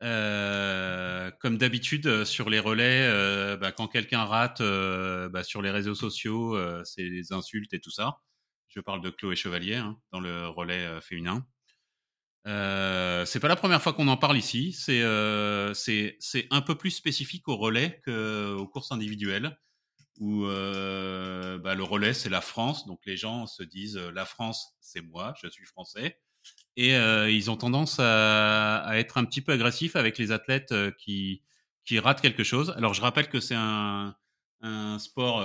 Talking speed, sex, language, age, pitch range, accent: 180 wpm, male, French, 30-49, 100-130 Hz, French